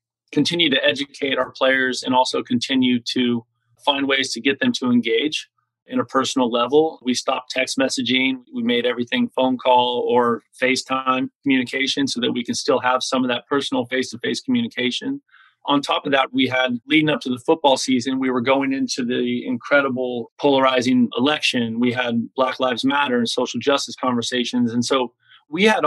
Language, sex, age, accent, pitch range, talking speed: English, male, 30-49, American, 125-150 Hz, 180 wpm